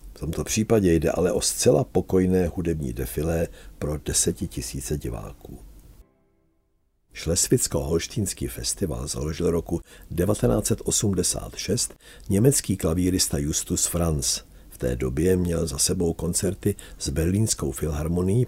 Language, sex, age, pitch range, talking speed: Czech, male, 50-69, 75-95 Hz, 105 wpm